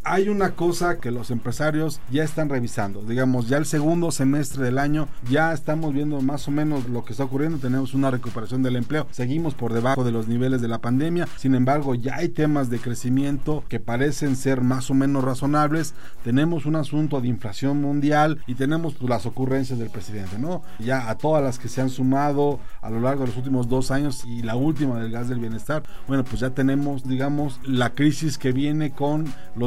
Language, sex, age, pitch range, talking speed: Spanish, male, 40-59, 125-145 Hz, 205 wpm